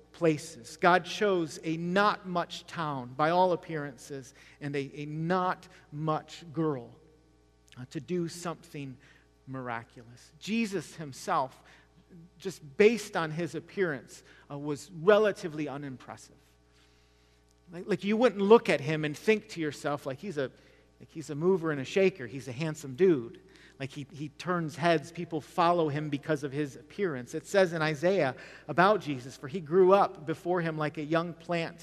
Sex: male